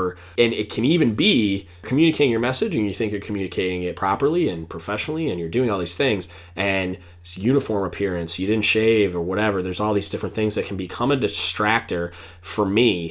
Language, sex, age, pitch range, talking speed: English, male, 20-39, 90-125 Hz, 200 wpm